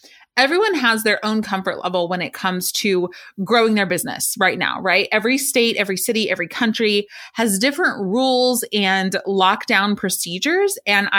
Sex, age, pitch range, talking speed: female, 30-49, 190-250 Hz, 155 wpm